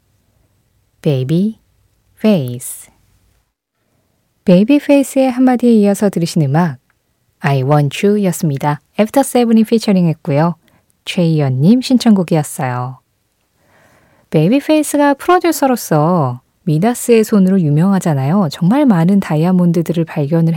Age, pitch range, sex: 20-39, 150-225 Hz, female